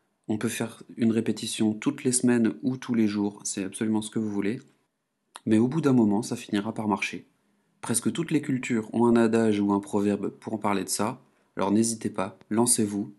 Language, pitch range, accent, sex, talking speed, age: French, 105-120 Hz, French, male, 210 wpm, 30-49